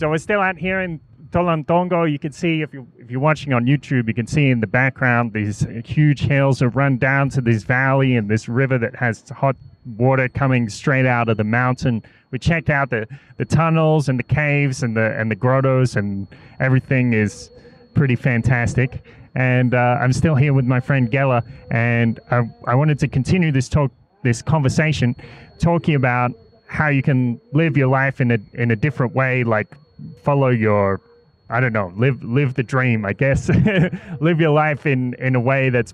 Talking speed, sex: 195 wpm, male